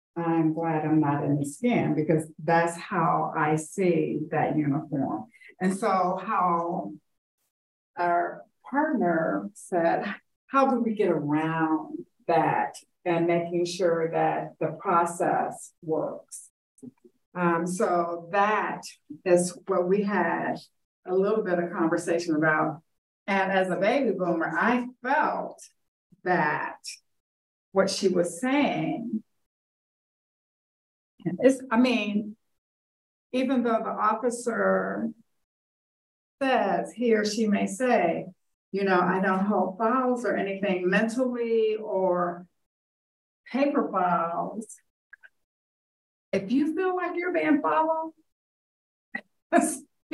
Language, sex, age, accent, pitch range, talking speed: English, female, 50-69, American, 170-240 Hz, 110 wpm